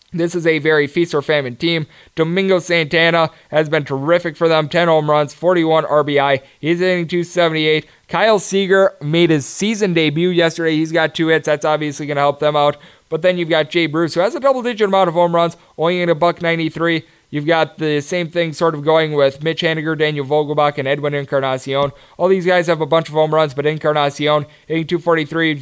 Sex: male